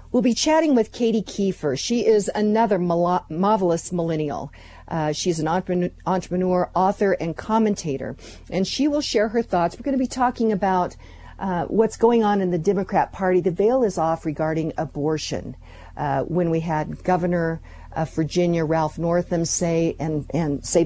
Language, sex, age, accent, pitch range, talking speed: English, female, 50-69, American, 160-190 Hz, 160 wpm